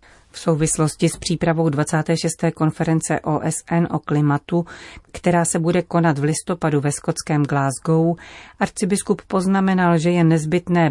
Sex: female